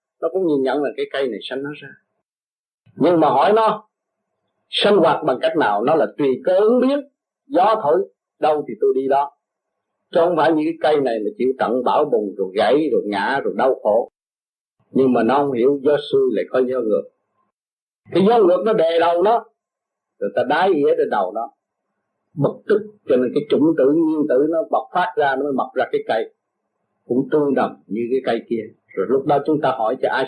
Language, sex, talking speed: Vietnamese, male, 220 wpm